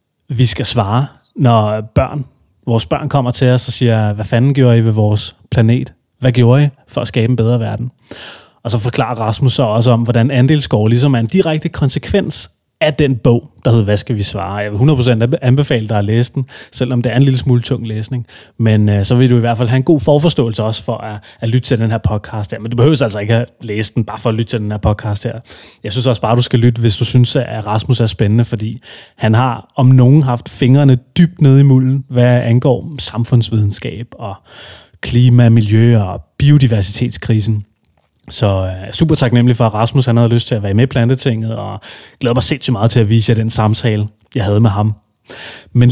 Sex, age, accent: male, 30-49, native